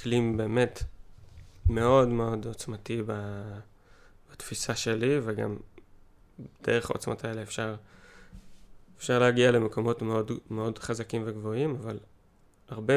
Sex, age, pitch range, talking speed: male, 20-39, 105-125 Hz, 95 wpm